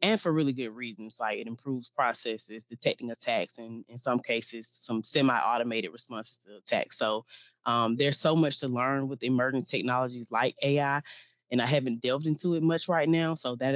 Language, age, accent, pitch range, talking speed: English, 20-39, American, 115-130 Hz, 190 wpm